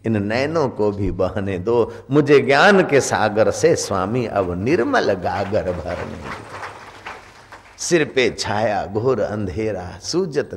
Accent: native